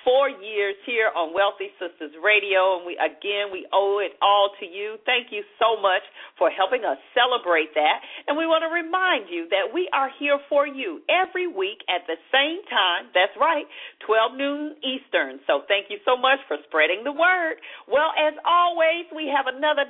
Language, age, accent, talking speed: English, 50-69, American, 190 wpm